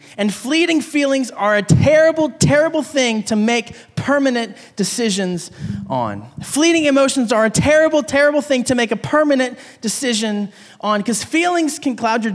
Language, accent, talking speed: English, American, 150 wpm